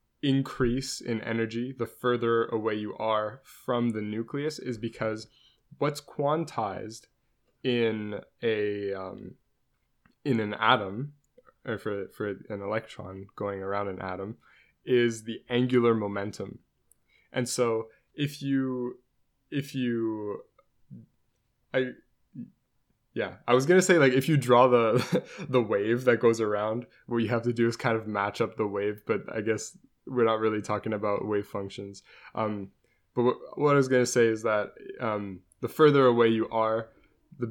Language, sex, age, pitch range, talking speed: English, male, 20-39, 105-125 Hz, 155 wpm